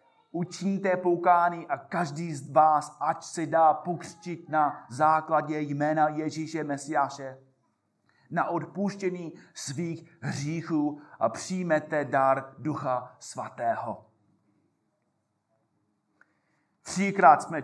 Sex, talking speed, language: male, 90 wpm, Czech